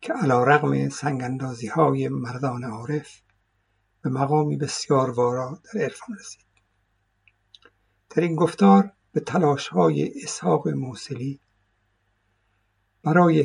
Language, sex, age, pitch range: Persian, male, 60-79, 105-150 Hz